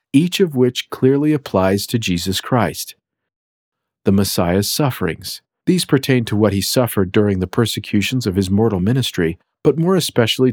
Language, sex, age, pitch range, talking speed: English, male, 50-69, 100-130 Hz, 155 wpm